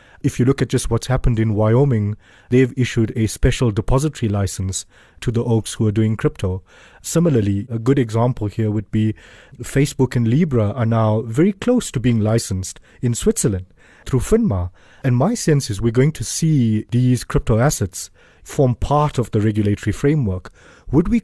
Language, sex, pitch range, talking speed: English, male, 110-150 Hz, 175 wpm